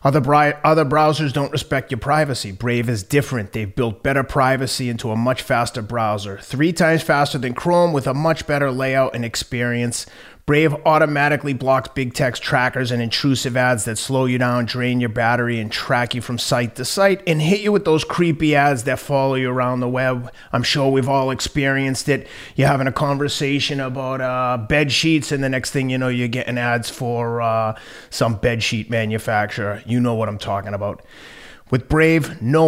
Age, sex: 30-49, male